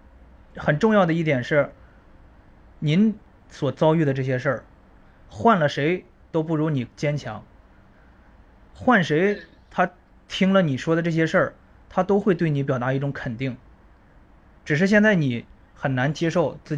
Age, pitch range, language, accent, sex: 20-39, 130-175 Hz, Chinese, native, male